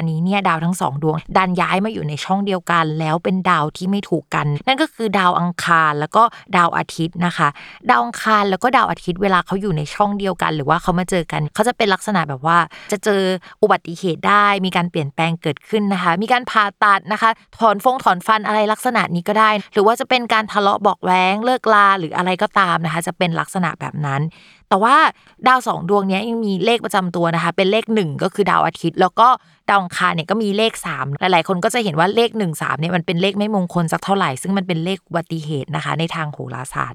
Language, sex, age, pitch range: Thai, female, 20-39, 170-215 Hz